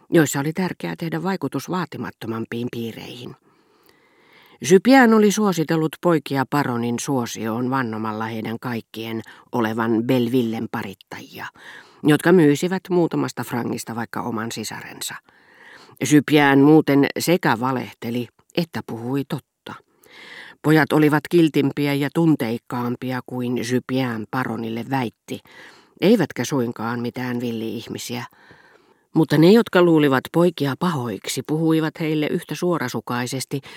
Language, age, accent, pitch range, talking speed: Finnish, 40-59, native, 120-160 Hz, 100 wpm